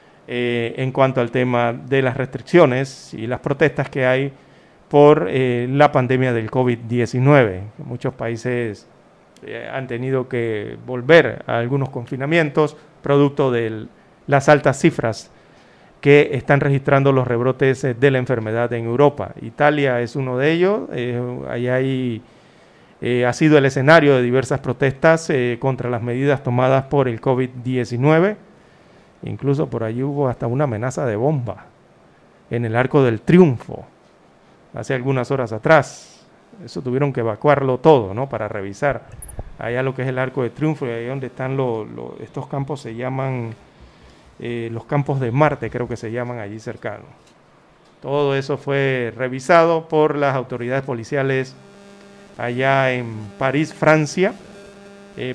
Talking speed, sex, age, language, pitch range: 145 wpm, male, 40-59, Spanish, 120-145 Hz